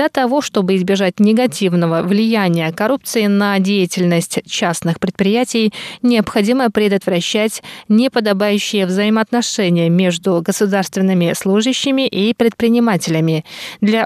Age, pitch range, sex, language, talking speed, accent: 20-39, 190-240 Hz, female, Russian, 90 wpm, native